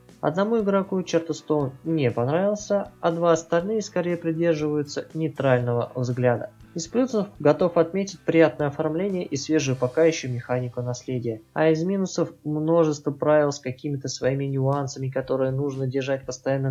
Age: 20-39